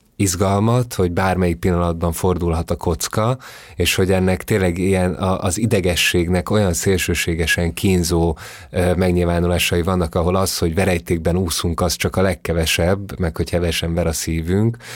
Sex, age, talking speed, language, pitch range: male, 30-49, 135 wpm, Hungarian, 85-95 Hz